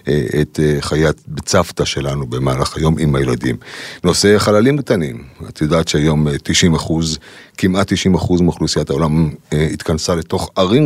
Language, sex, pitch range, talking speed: Hebrew, male, 75-95 Hz, 135 wpm